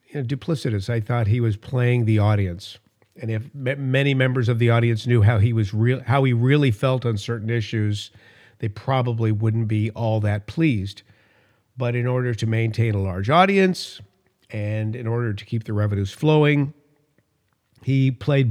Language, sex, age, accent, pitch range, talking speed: English, male, 50-69, American, 110-145 Hz, 180 wpm